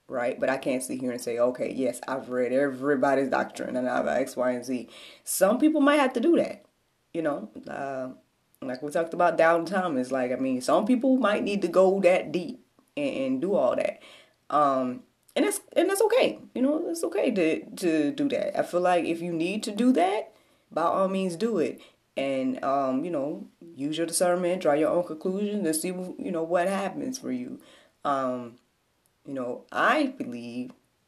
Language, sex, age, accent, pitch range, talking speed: English, female, 20-39, American, 135-215 Hz, 205 wpm